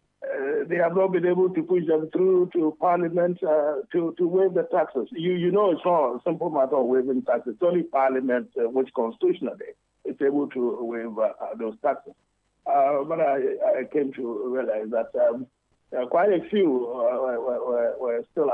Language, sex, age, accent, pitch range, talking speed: English, male, 50-69, Nigerian, 140-215 Hz, 190 wpm